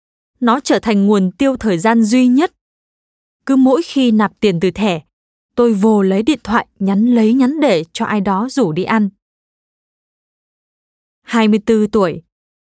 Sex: female